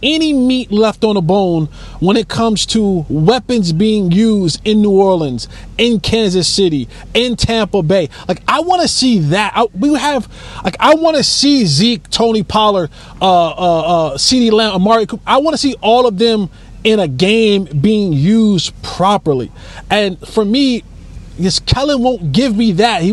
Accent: American